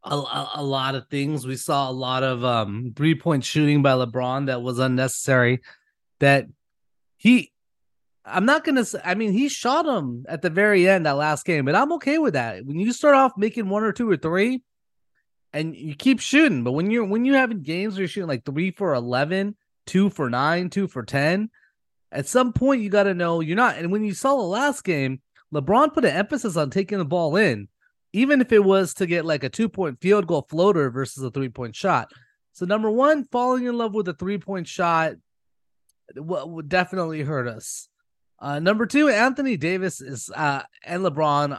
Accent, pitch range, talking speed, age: American, 140-205 Hz, 210 wpm, 20-39